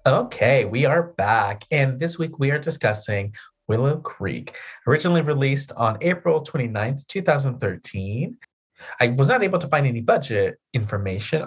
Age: 30-49